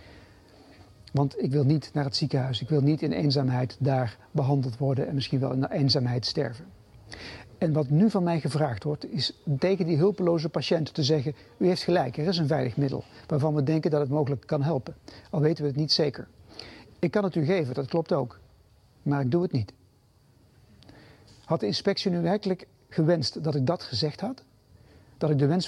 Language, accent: Dutch, Dutch